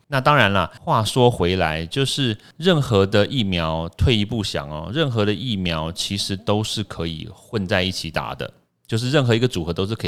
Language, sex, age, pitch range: Chinese, male, 30-49, 85-110 Hz